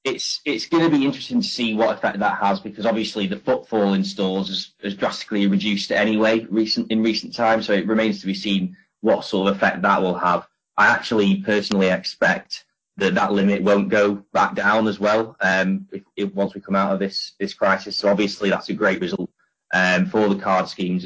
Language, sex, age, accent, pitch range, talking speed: English, male, 20-39, British, 95-110 Hz, 210 wpm